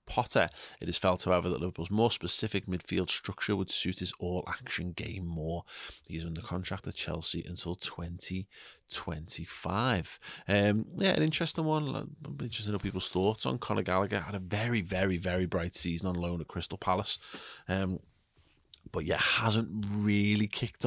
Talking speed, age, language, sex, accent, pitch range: 165 wpm, 30-49, English, male, British, 85-100 Hz